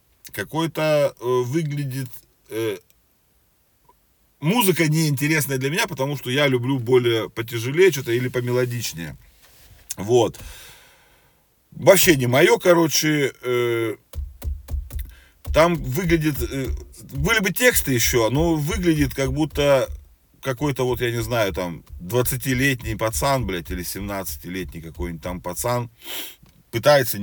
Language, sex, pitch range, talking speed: Russian, male, 90-145 Hz, 105 wpm